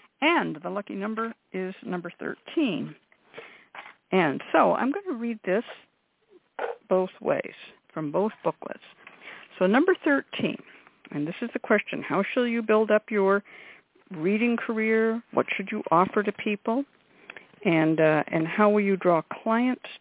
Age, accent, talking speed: 60-79, American, 145 wpm